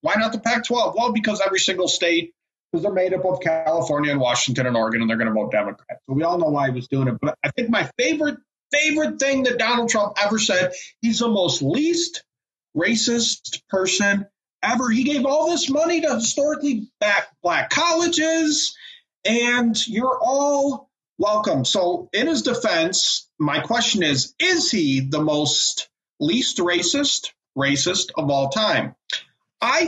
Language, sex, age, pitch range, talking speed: English, male, 40-59, 155-255 Hz, 170 wpm